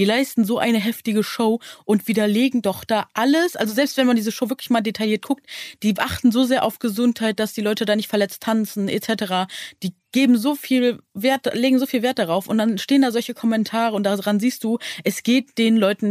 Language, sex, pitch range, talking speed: German, female, 190-230 Hz, 220 wpm